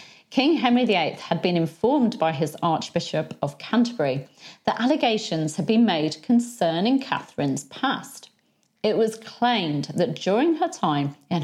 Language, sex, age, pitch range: English, female, 40-59, 160-220 Hz